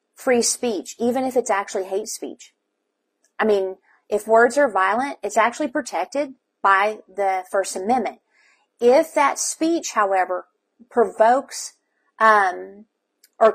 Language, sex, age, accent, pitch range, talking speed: English, female, 40-59, American, 200-275 Hz, 125 wpm